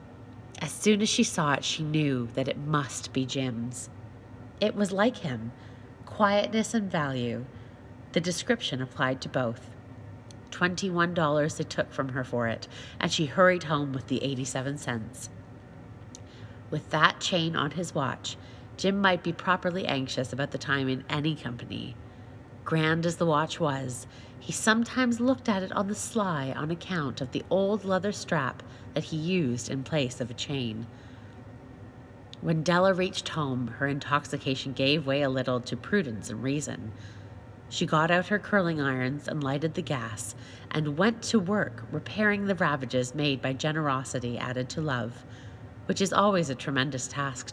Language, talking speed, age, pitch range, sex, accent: English, 160 wpm, 30-49, 120-165 Hz, female, American